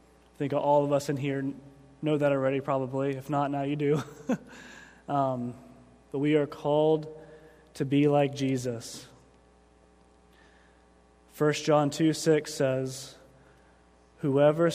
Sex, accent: male, American